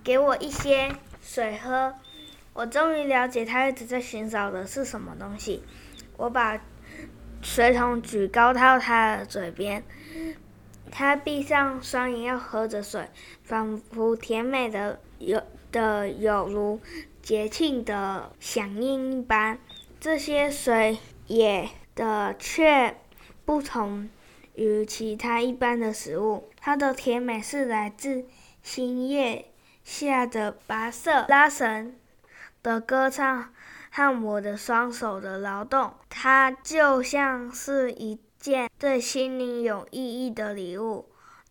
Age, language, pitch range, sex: 10-29, Chinese, 215-265 Hz, female